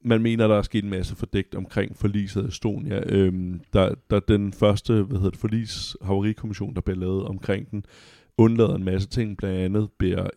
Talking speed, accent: 175 wpm, native